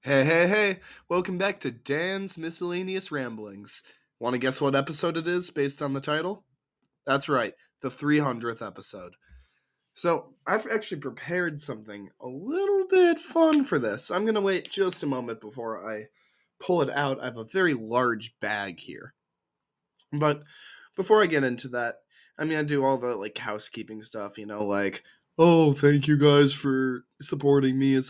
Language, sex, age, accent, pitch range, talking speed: English, male, 20-39, American, 115-145 Hz, 170 wpm